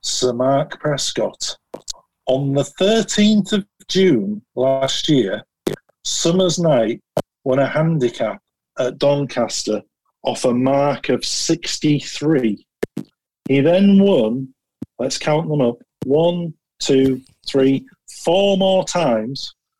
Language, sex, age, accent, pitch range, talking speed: English, male, 50-69, British, 130-155 Hz, 105 wpm